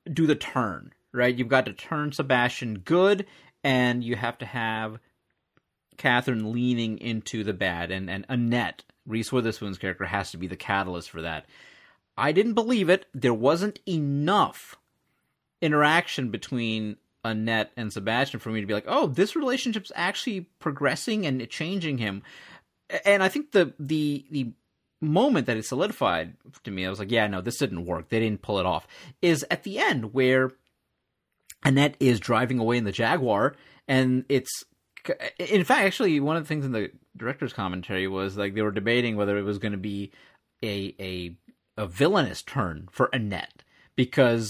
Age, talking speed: 30-49, 170 wpm